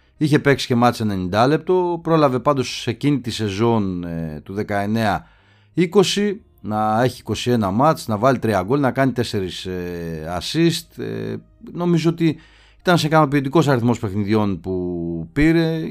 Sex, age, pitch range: male, 30-49, 100-140 Hz